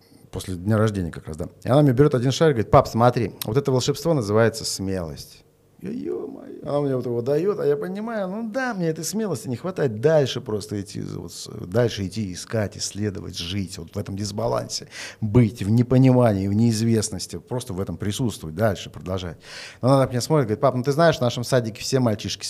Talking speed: 200 wpm